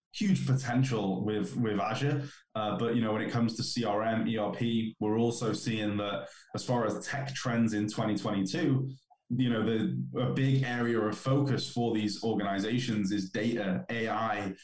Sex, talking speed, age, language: male, 165 wpm, 20-39, English